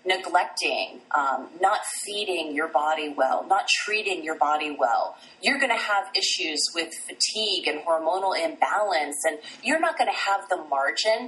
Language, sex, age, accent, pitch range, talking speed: English, female, 30-49, American, 150-215 Hz, 160 wpm